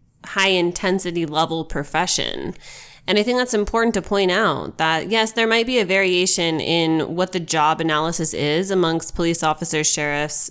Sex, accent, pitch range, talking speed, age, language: female, American, 160-195 Hz, 155 wpm, 20-39, English